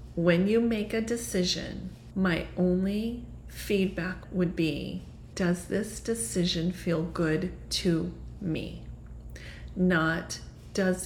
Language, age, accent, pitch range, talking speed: English, 30-49, American, 180-220 Hz, 105 wpm